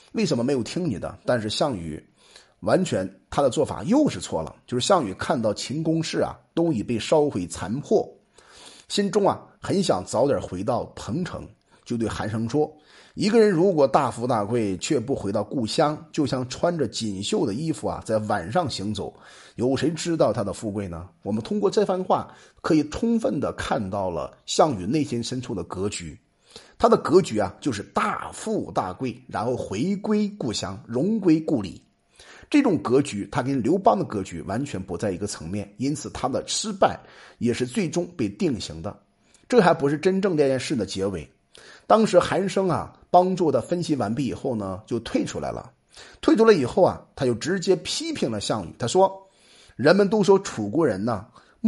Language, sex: Chinese, male